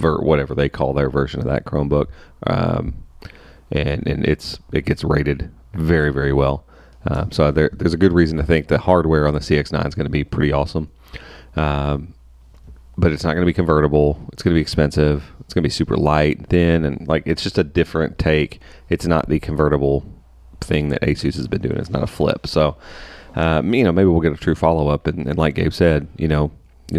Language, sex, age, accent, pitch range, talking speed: English, male, 30-49, American, 75-85 Hz, 215 wpm